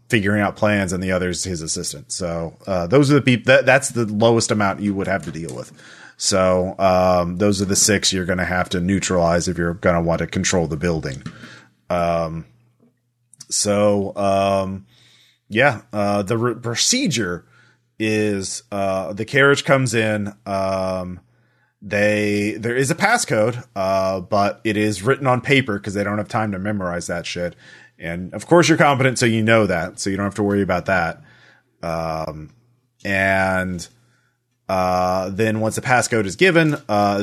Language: English